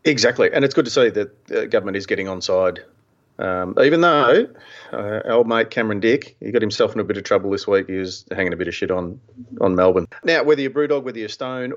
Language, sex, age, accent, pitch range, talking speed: English, male, 40-59, Australian, 100-130 Hz, 250 wpm